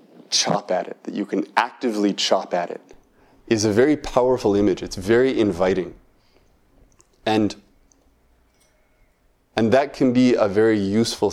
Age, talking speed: 30-49, 140 wpm